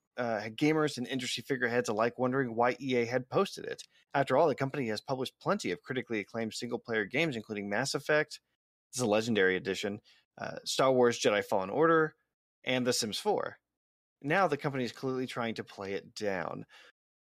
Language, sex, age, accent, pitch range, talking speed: English, male, 30-49, American, 115-140 Hz, 180 wpm